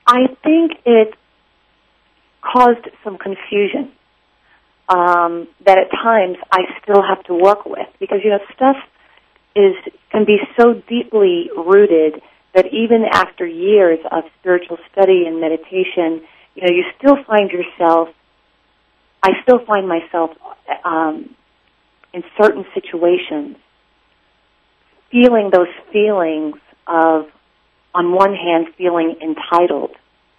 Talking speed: 115 wpm